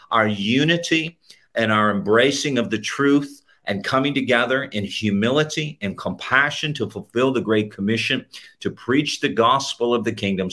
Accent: American